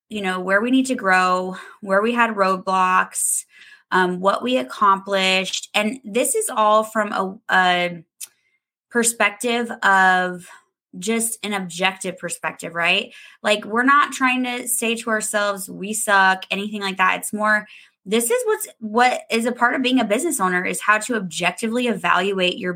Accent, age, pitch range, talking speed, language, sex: American, 20-39, 190-250 Hz, 165 wpm, English, female